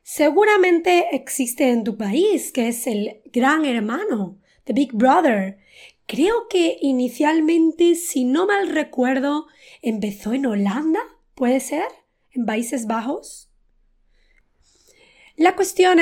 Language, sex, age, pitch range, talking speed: English, female, 30-49, 235-330 Hz, 110 wpm